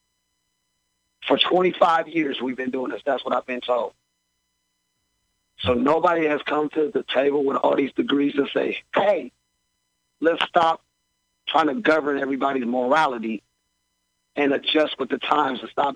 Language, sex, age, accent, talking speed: English, male, 50-69, American, 150 wpm